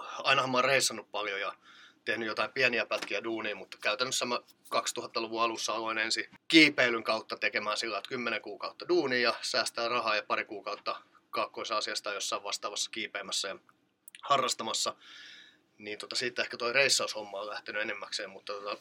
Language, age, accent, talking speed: Finnish, 30-49, native, 155 wpm